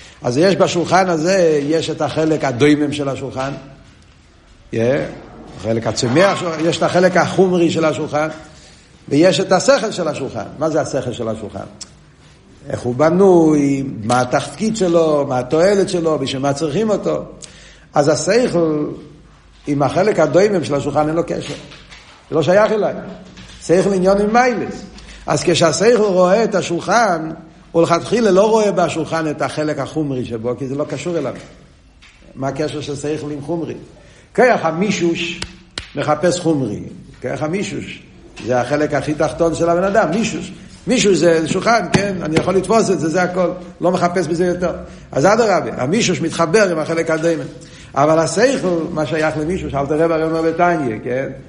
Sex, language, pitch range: male, Hebrew, 145-180 Hz